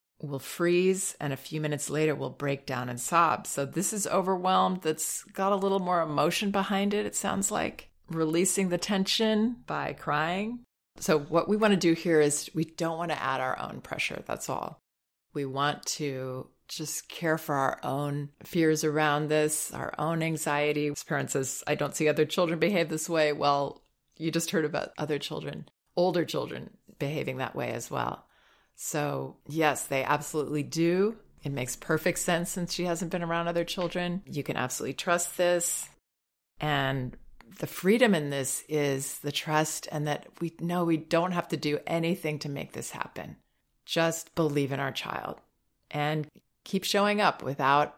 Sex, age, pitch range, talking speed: female, 30-49, 140-175 Hz, 180 wpm